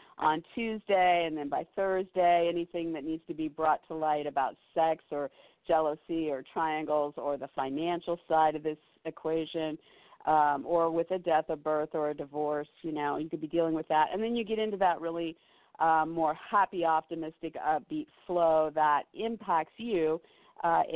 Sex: female